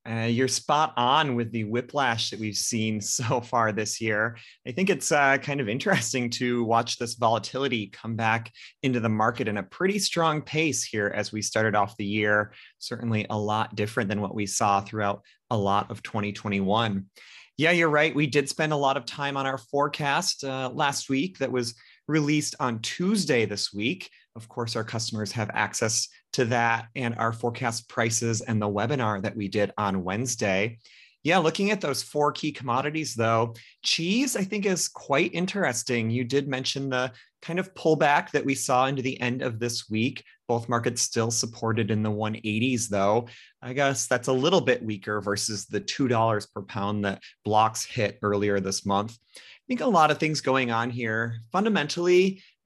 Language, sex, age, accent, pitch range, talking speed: English, male, 30-49, American, 110-140 Hz, 185 wpm